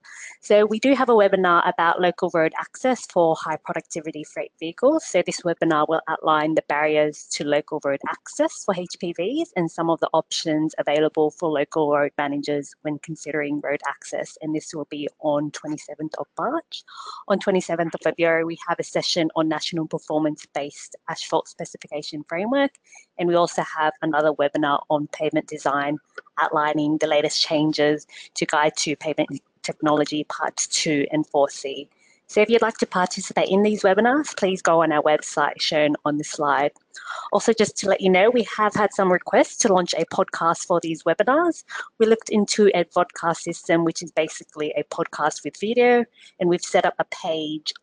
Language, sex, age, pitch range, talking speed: English, female, 20-39, 155-195 Hz, 180 wpm